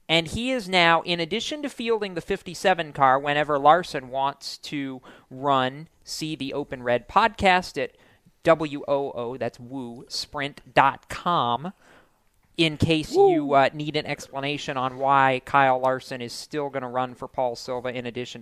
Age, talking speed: 40-59, 155 wpm